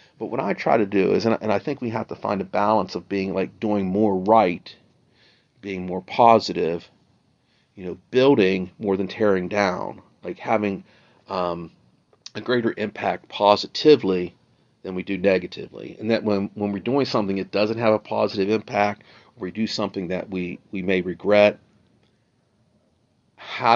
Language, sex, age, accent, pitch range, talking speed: English, male, 40-59, American, 95-115 Hz, 165 wpm